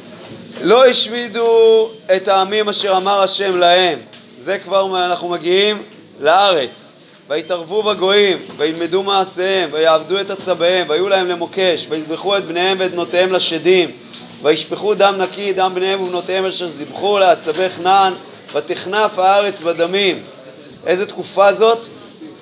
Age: 30-49